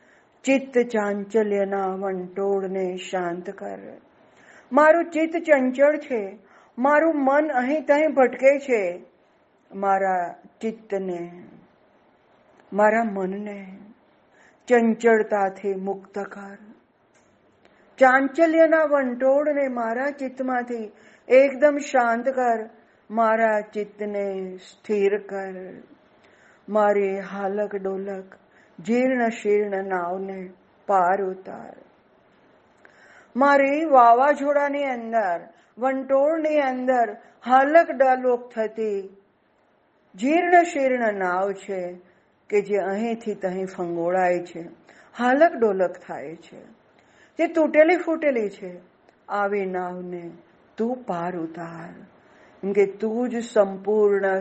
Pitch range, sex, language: 195-260 Hz, female, Gujarati